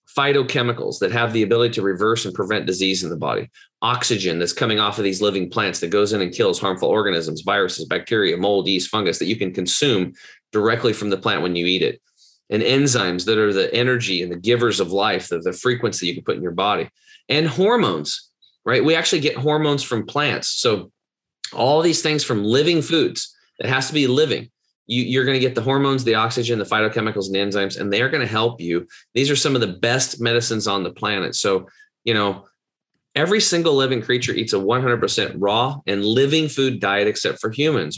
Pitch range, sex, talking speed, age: 100-135 Hz, male, 210 wpm, 30-49